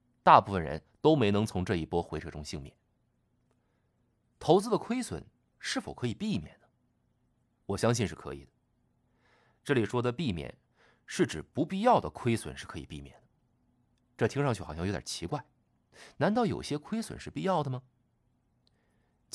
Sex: male